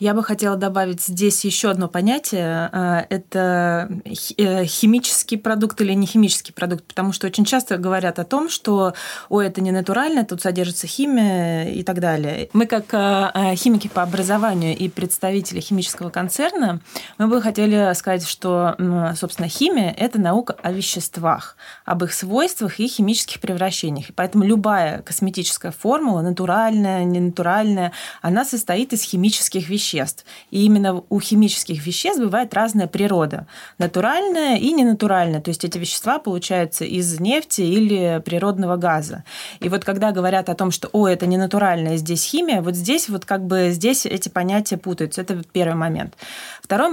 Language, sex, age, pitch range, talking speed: Russian, female, 20-39, 180-215 Hz, 150 wpm